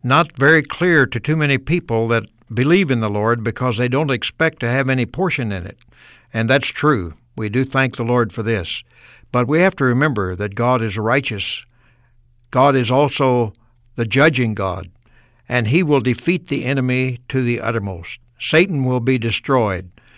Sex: male